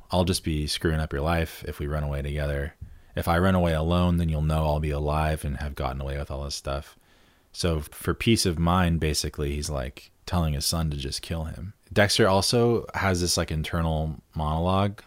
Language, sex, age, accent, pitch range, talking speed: English, male, 20-39, American, 75-90 Hz, 210 wpm